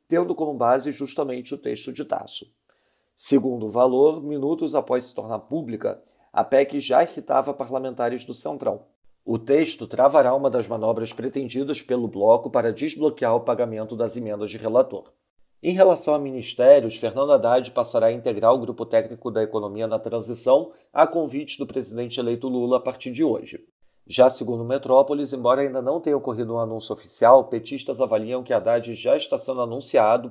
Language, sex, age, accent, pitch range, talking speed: Portuguese, male, 40-59, Brazilian, 115-145 Hz, 170 wpm